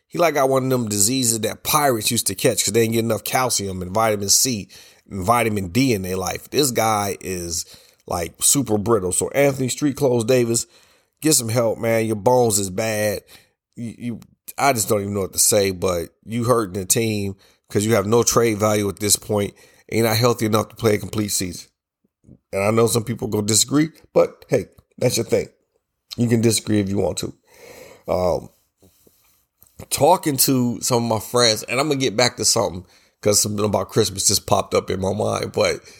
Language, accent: English, American